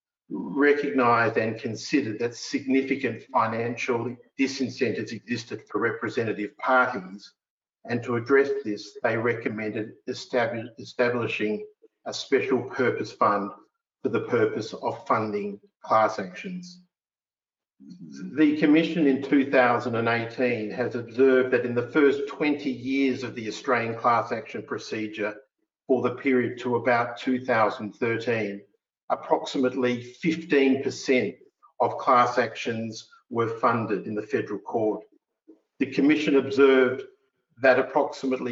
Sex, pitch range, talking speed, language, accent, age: male, 115-135 Hz, 110 wpm, English, Australian, 50-69